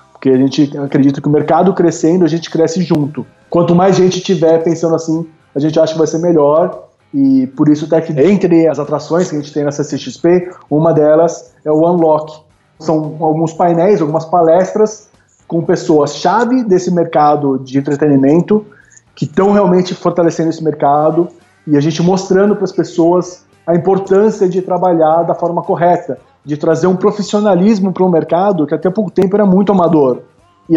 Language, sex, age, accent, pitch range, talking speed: Portuguese, male, 20-39, Brazilian, 150-185 Hz, 175 wpm